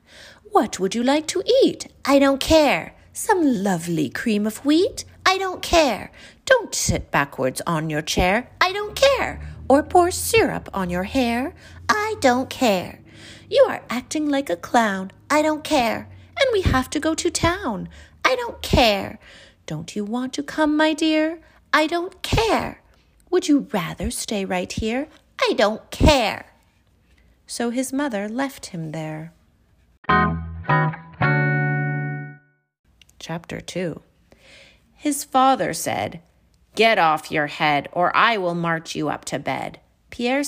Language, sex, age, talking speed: English, female, 30-49, 145 wpm